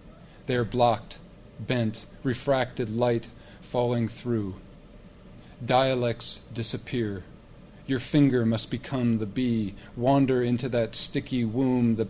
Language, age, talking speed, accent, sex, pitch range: English, 40-59, 110 wpm, American, male, 115-130 Hz